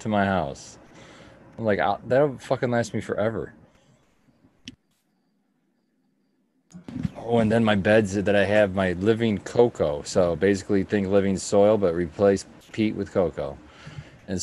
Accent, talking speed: American, 135 wpm